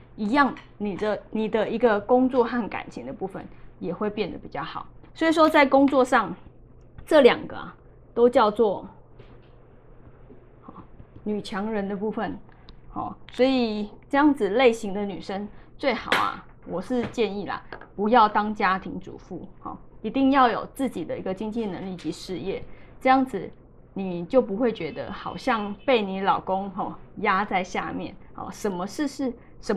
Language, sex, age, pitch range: Chinese, female, 20-39, 195-245 Hz